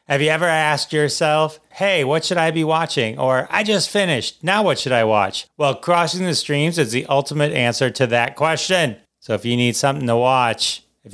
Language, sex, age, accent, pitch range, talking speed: English, male, 40-59, American, 115-150 Hz, 210 wpm